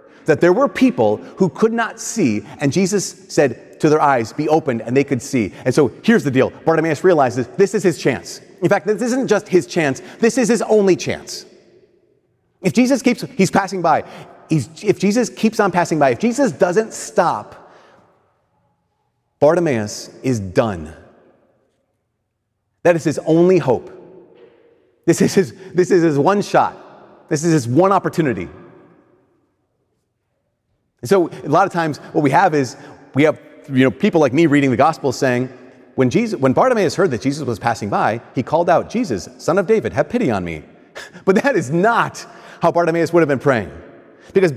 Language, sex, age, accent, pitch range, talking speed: English, male, 30-49, American, 130-195 Hz, 175 wpm